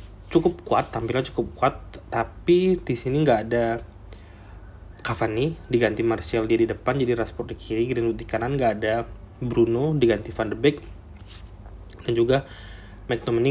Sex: male